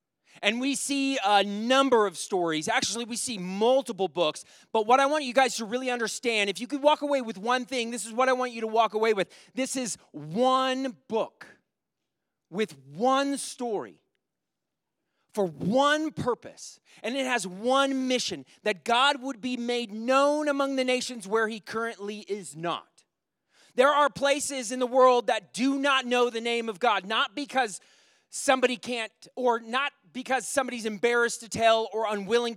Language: English